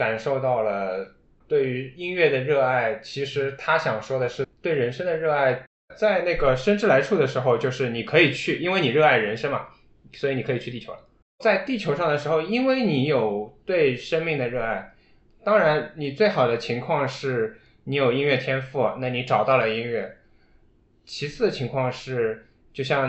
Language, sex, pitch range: Chinese, male, 110-145 Hz